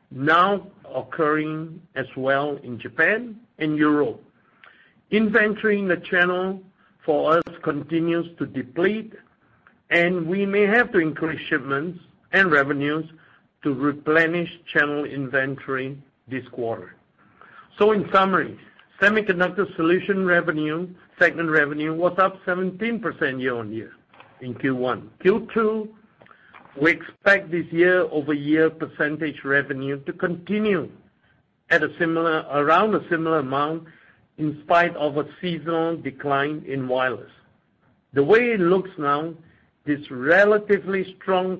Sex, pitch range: male, 145-185 Hz